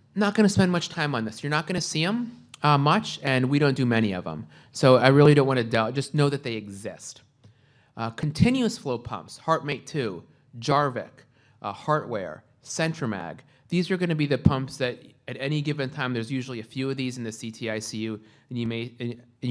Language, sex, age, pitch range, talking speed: English, male, 30-49, 110-140 Hz, 205 wpm